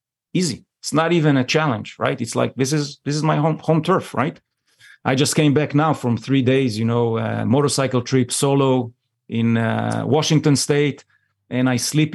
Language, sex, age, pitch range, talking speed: English, male, 40-59, 120-155 Hz, 195 wpm